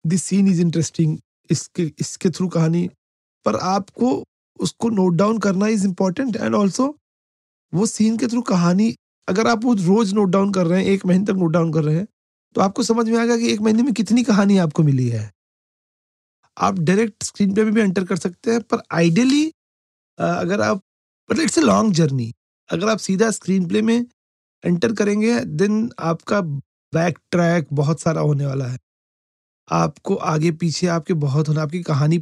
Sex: male